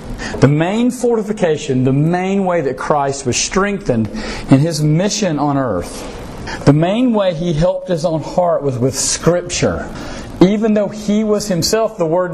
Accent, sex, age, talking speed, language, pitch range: American, male, 50-69, 160 wpm, English, 135-180 Hz